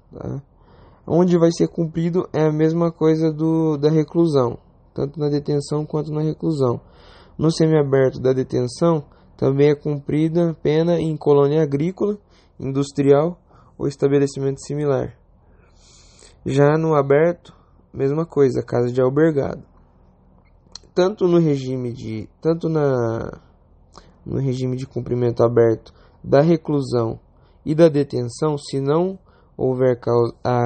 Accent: Brazilian